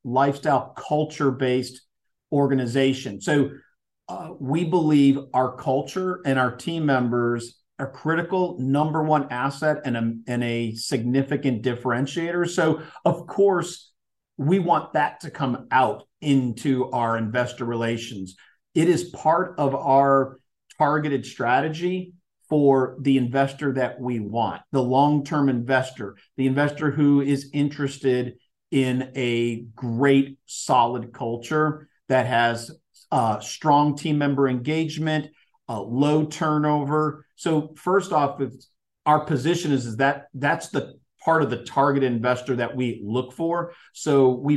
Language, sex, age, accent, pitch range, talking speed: English, male, 50-69, American, 125-150 Hz, 130 wpm